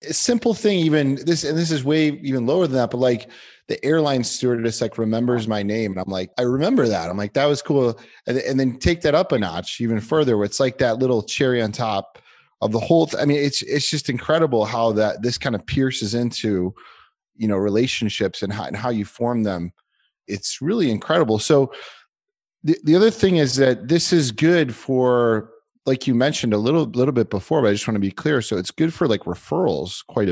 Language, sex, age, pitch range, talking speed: English, male, 30-49, 105-140 Hz, 225 wpm